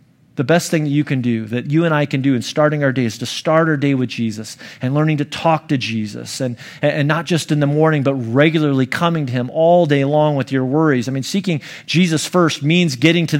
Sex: male